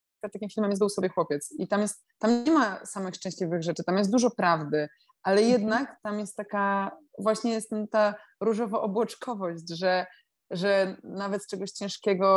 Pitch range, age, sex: 165-200 Hz, 20-39, female